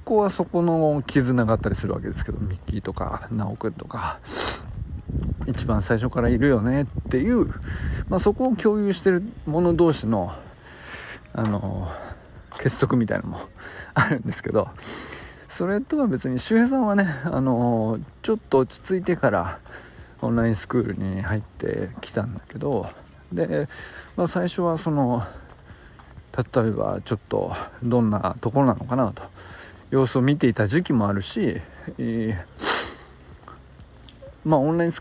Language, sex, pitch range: Japanese, male, 100-155 Hz